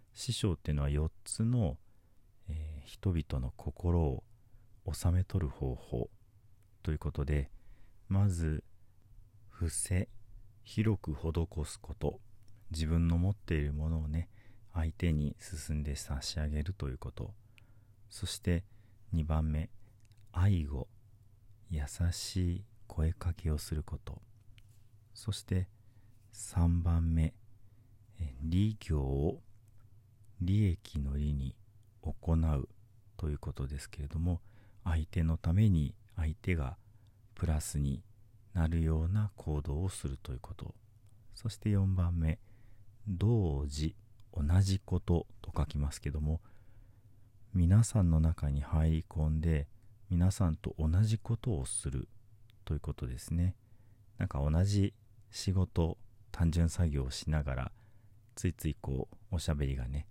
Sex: male